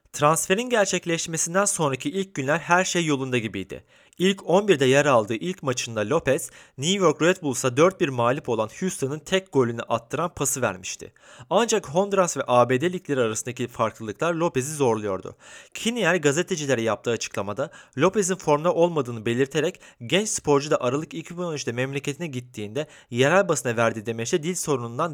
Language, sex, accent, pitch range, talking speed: Turkish, male, native, 120-175 Hz, 140 wpm